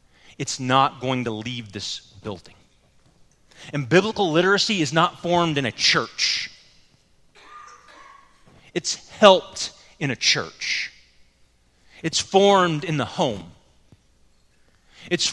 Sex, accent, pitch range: male, American, 130-185 Hz